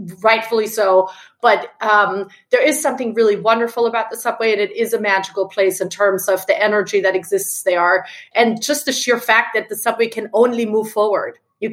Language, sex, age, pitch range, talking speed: English, female, 30-49, 205-245 Hz, 200 wpm